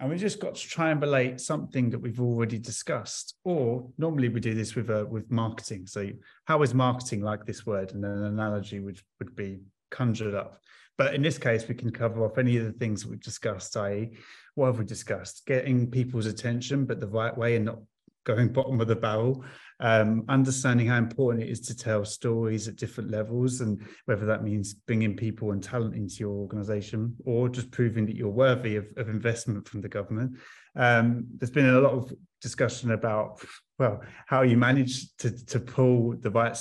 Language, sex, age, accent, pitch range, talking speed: English, male, 30-49, British, 110-125 Hz, 200 wpm